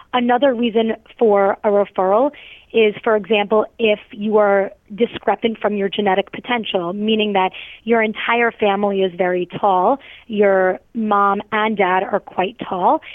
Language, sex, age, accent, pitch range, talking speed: English, female, 20-39, American, 200-235 Hz, 140 wpm